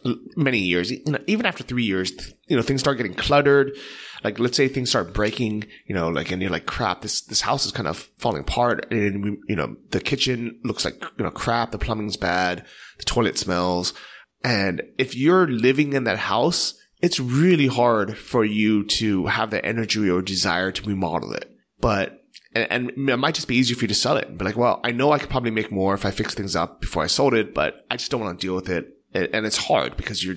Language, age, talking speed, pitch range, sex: English, 20-39, 235 wpm, 95-125 Hz, male